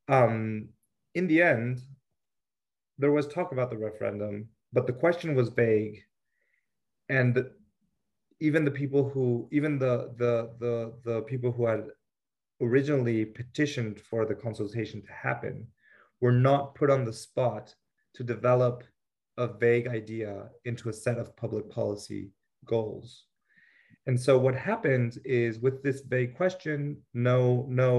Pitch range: 110-135 Hz